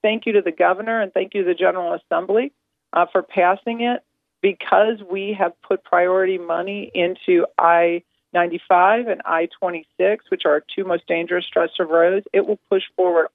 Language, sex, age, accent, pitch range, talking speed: English, female, 40-59, American, 170-210 Hz, 175 wpm